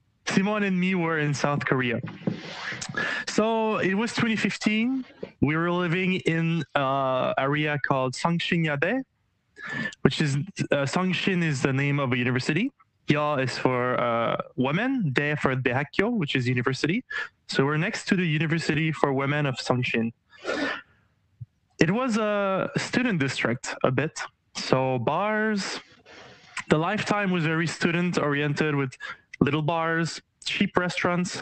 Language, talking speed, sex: English, 135 wpm, male